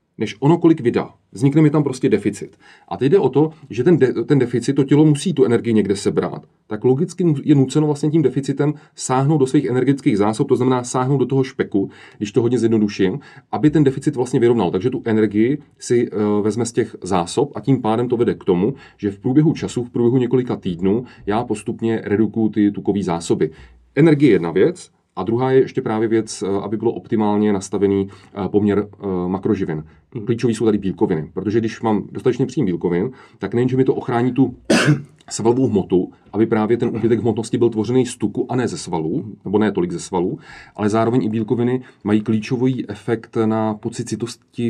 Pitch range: 105-135 Hz